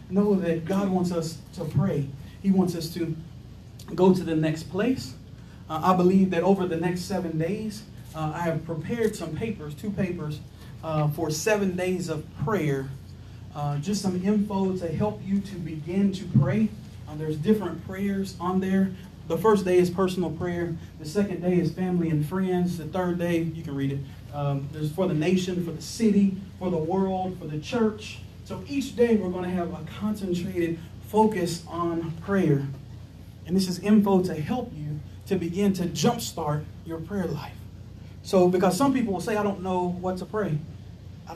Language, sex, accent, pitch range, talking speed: English, male, American, 150-190 Hz, 185 wpm